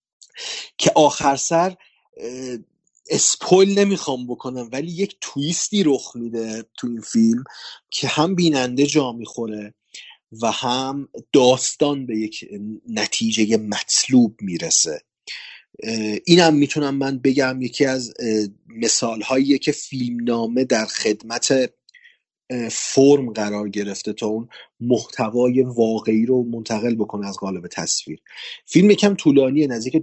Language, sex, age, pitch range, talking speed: Persian, male, 30-49, 110-140 Hz, 110 wpm